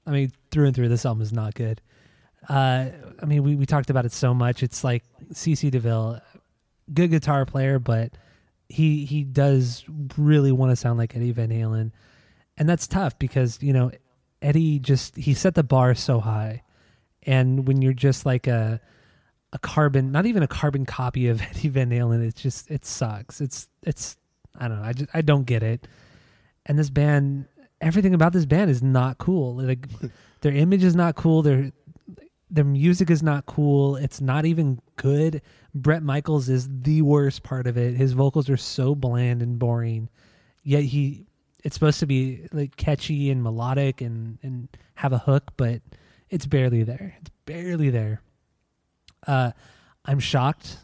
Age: 20-39